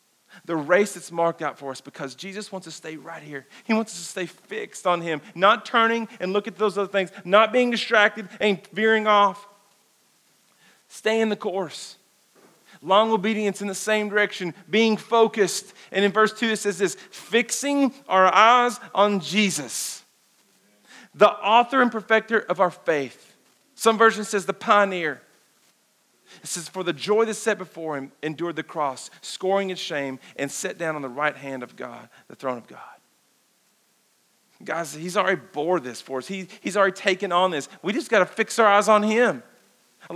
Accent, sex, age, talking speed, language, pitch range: American, male, 40-59, 185 wpm, English, 180-220 Hz